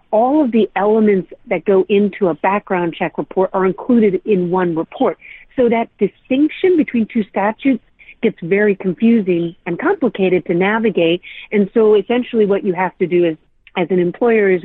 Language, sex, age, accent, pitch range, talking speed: English, female, 40-59, American, 170-200 Hz, 170 wpm